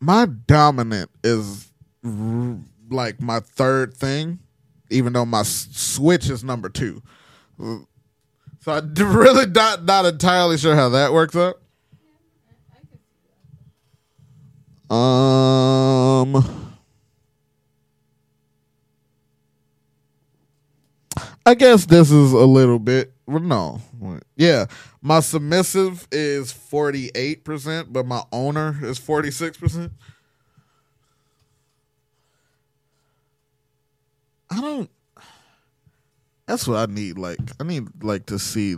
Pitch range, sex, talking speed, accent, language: 115-150 Hz, male, 95 wpm, American, English